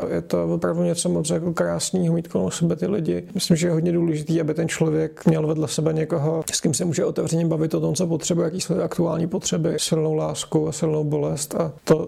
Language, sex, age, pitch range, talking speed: Czech, male, 40-59, 155-175 Hz, 225 wpm